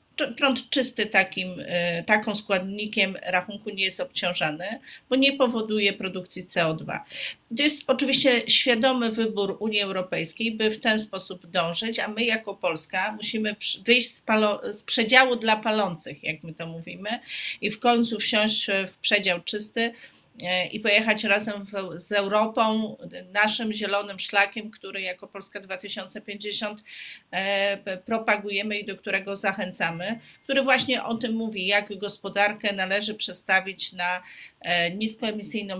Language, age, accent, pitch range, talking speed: Polish, 30-49, native, 190-220 Hz, 125 wpm